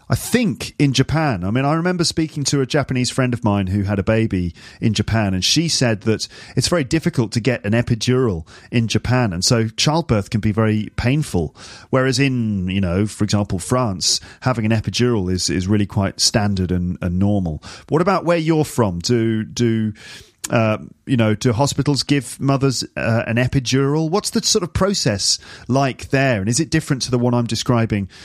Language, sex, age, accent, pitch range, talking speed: English, male, 40-59, British, 110-145 Hz, 200 wpm